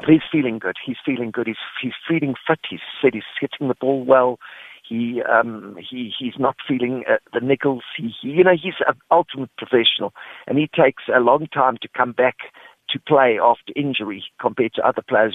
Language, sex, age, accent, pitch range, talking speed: English, male, 50-69, British, 120-145 Hz, 200 wpm